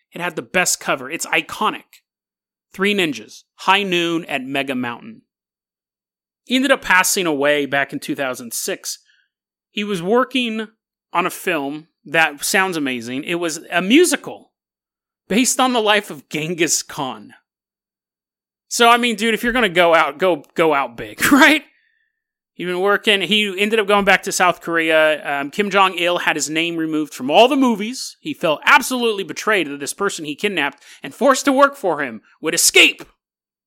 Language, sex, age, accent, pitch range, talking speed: English, male, 30-49, American, 150-225 Hz, 170 wpm